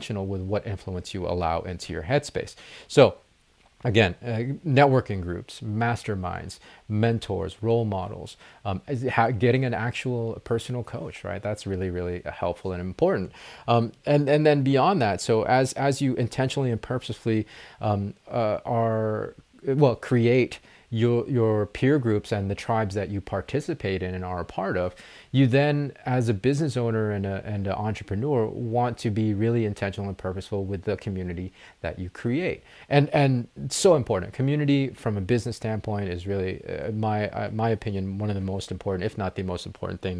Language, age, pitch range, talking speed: English, 30-49, 95-120 Hz, 170 wpm